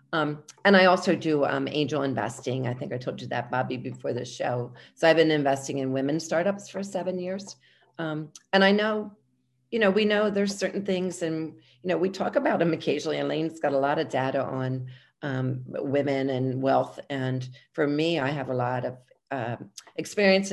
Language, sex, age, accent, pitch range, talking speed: English, female, 40-59, American, 140-190 Hz, 200 wpm